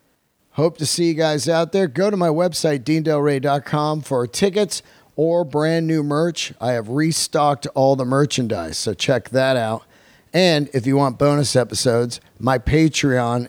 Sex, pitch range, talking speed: male, 125-155 Hz, 160 wpm